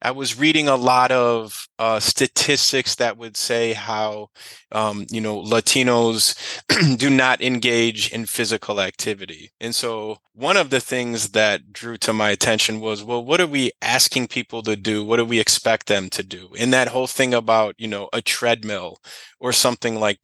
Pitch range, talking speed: 115-140 Hz, 180 wpm